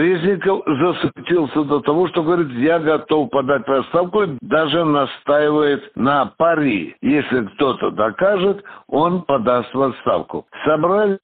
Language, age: Russian, 60-79